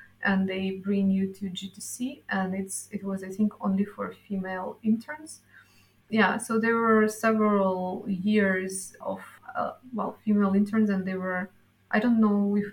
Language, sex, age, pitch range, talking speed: English, female, 20-39, 195-225 Hz, 160 wpm